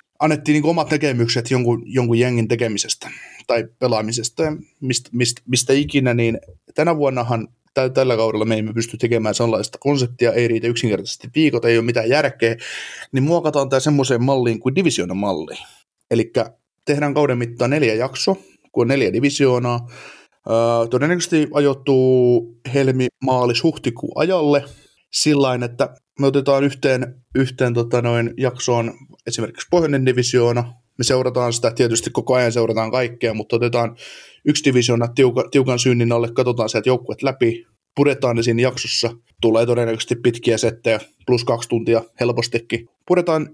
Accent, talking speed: native, 140 wpm